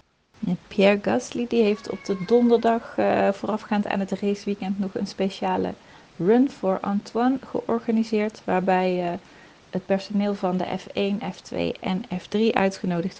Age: 30-49